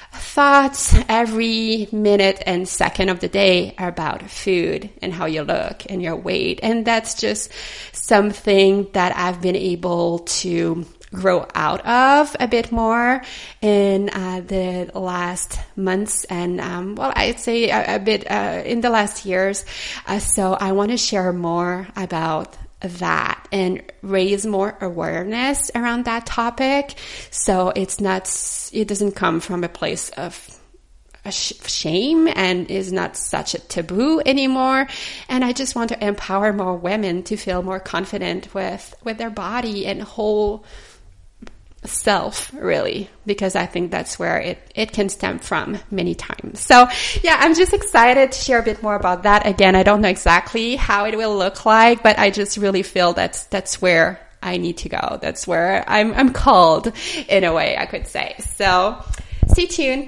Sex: female